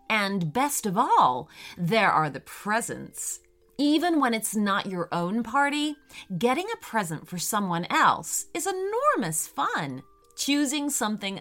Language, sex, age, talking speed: English, female, 30-49, 135 wpm